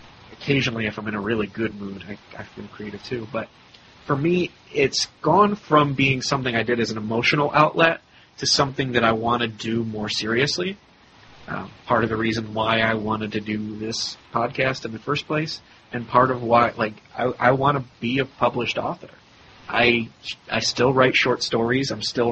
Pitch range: 110-130 Hz